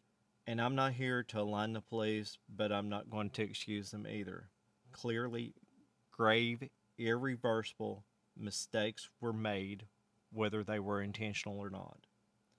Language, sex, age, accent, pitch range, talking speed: English, male, 40-59, American, 105-125 Hz, 135 wpm